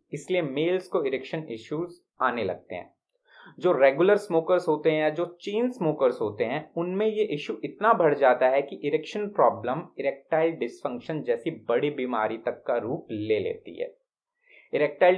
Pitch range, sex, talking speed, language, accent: 145-200 Hz, male, 160 wpm, Hindi, native